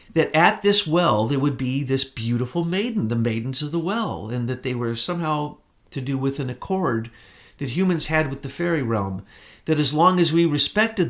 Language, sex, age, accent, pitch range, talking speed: English, male, 50-69, American, 130-170 Hz, 205 wpm